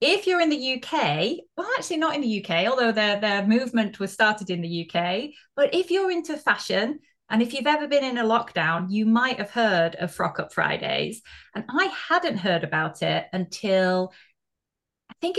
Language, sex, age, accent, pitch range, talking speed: English, female, 30-49, British, 190-290 Hz, 190 wpm